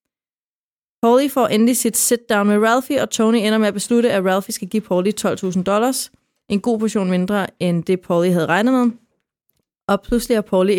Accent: native